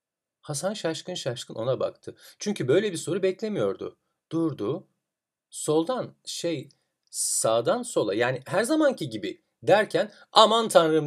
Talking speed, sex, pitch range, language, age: 120 wpm, male, 125-195 Hz, Turkish, 40-59